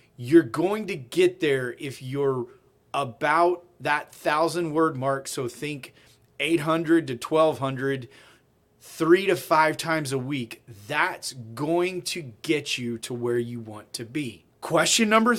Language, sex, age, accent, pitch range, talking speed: English, male, 30-49, American, 135-175 Hz, 140 wpm